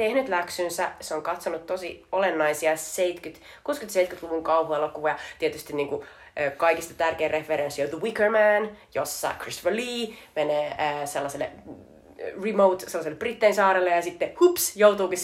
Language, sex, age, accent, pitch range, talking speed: Finnish, female, 30-49, native, 155-195 Hz, 135 wpm